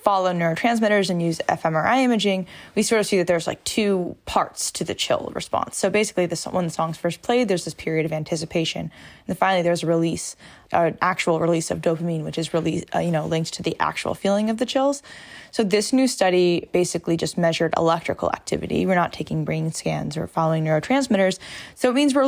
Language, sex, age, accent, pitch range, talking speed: English, female, 10-29, American, 165-195 Hz, 210 wpm